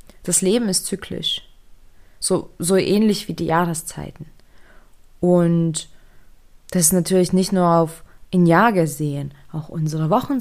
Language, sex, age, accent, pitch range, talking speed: German, female, 20-39, German, 155-195 Hz, 125 wpm